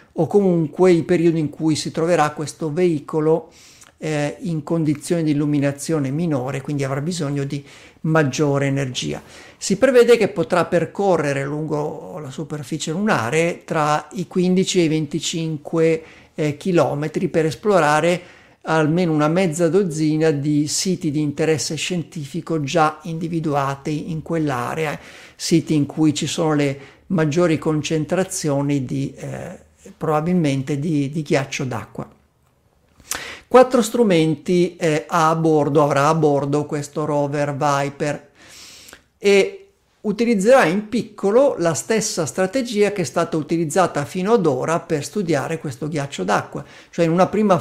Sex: male